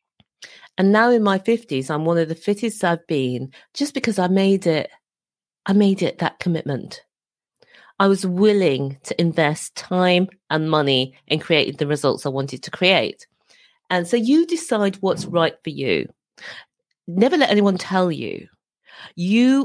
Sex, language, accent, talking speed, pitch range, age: female, English, British, 160 wpm, 140-205 Hz, 40-59